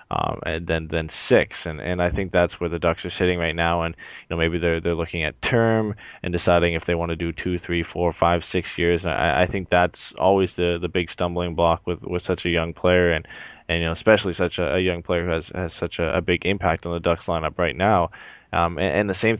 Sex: male